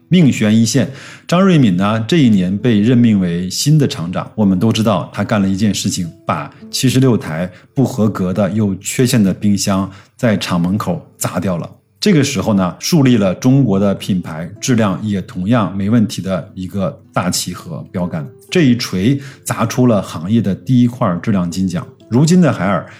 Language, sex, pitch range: Chinese, male, 95-135 Hz